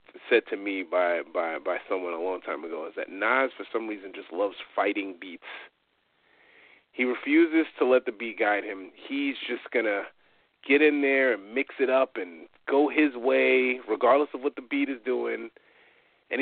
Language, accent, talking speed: English, American, 185 wpm